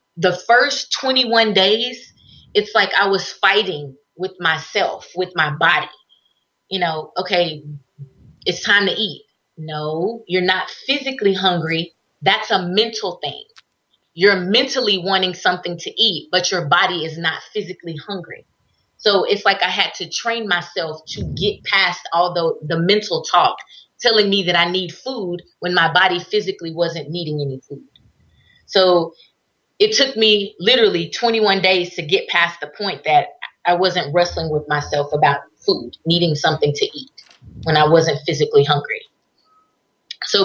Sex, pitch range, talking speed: female, 165-210 Hz, 155 wpm